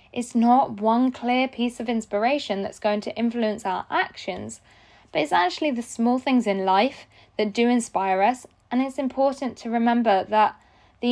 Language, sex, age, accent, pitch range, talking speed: English, female, 10-29, British, 200-255 Hz, 175 wpm